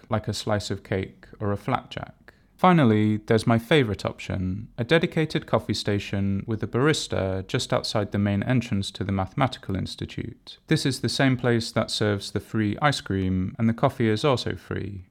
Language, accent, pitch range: English, British, 100-125 Hz